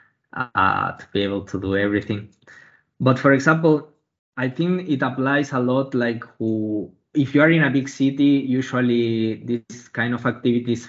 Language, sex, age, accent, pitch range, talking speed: Finnish, male, 20-39, Spanish, 110-130 Hz, 165 wpm